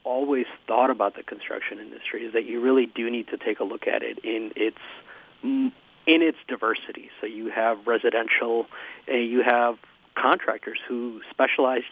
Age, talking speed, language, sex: 40-59, 160 wpm, English, male